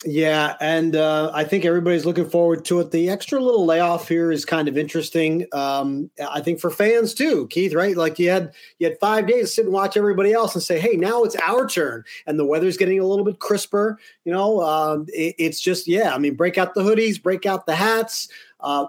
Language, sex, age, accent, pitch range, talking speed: English, male, 40-59, American, 150-205 Hz, 230 wpm